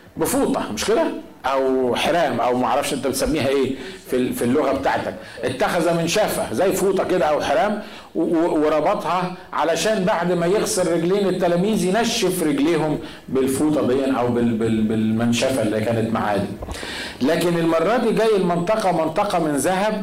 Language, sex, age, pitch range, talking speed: Arabic, male, 50-69, 130-185 Hz, 175 wpm